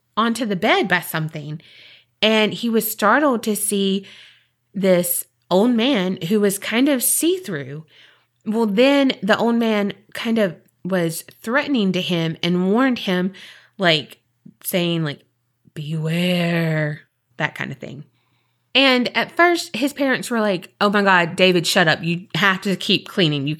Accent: American